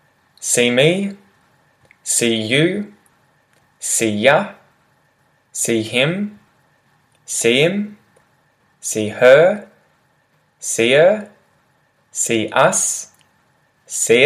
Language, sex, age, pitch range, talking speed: English, male, 10-29, 105-150 Hz, 70 wpm